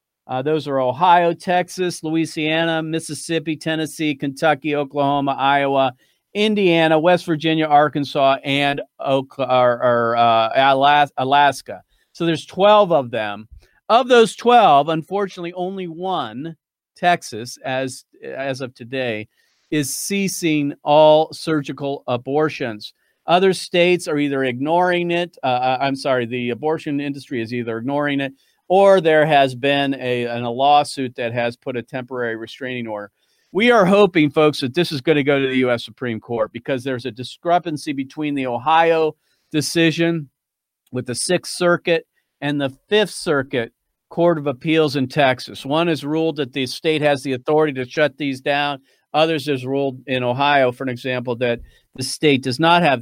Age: 40-59